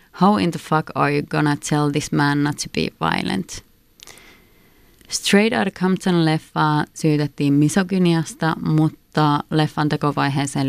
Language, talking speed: Finnish, 125 wpm